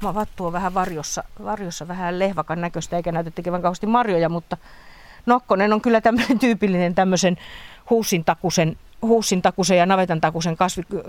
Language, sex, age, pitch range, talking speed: Finnish, female, 40-59, 160-195 Hz, 130 wpm